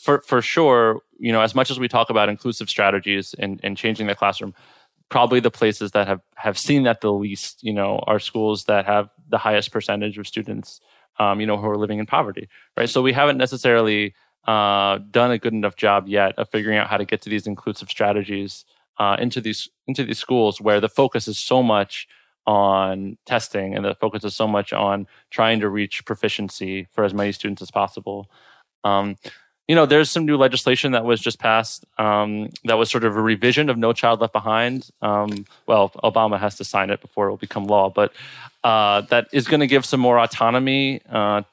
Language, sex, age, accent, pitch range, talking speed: English, male, 20-39, American, 105-120 Hz, 210 wpm